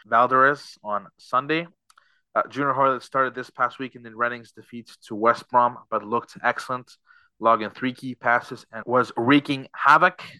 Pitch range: 110-130 Hz